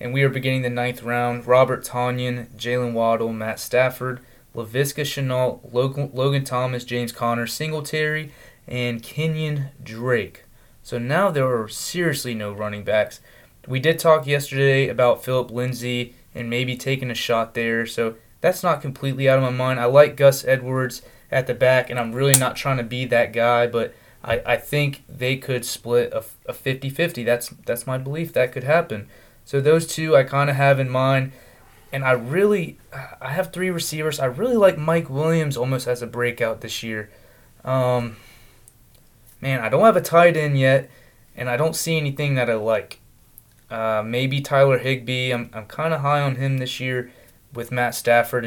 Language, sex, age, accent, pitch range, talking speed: English, male, 20-39, American, 120-140 Hz, 180 wpm